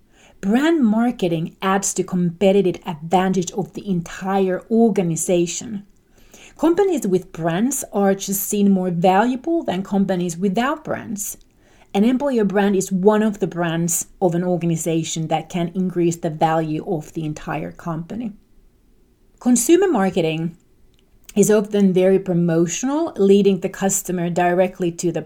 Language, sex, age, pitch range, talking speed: English, female, 30-49, 175-220 Hz, 130 wpm